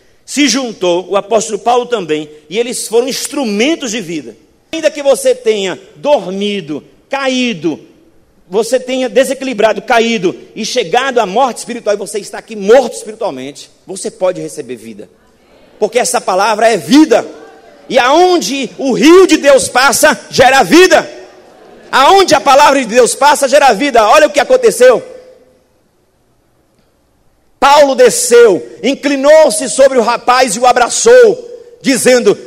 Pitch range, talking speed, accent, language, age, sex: 220-300 Hz, 135 wpm, Brazilian, Portuguese, 50-69, male